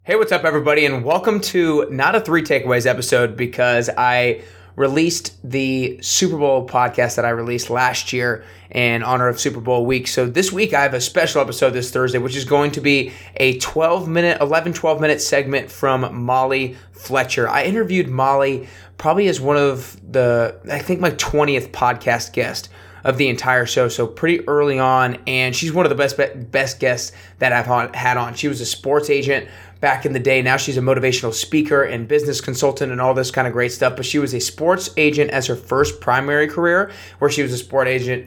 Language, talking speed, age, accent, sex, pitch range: English, 205 wpm, 20-39, American, male, 125-150 Hz